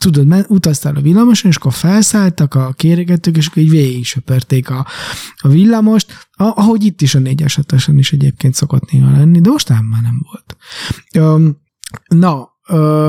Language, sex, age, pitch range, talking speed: Hungarian, male, 20-39, 135-170 Hz, 165 wpm